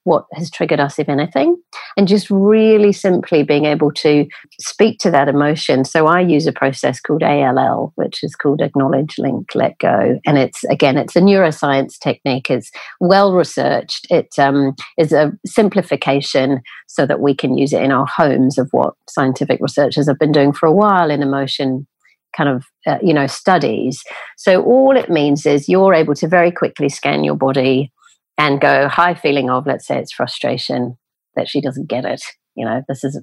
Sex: female